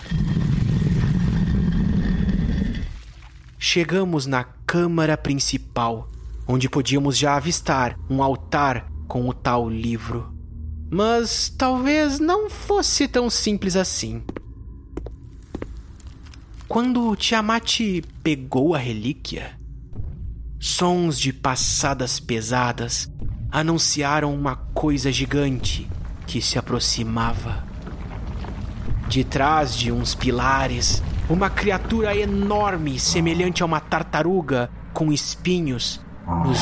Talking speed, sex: 85 wpm, male